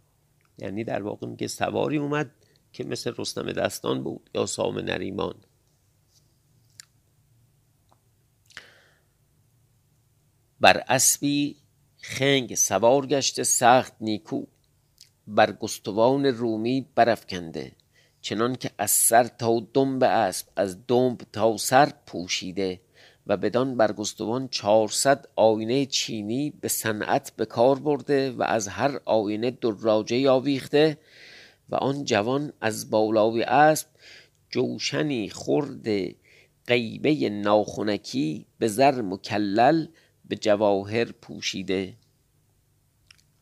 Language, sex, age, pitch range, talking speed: Persian, male, 50-69, 105-135 Hz, 95 wpm